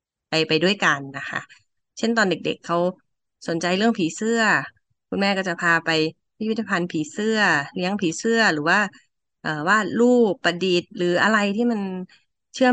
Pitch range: 160-200 Hz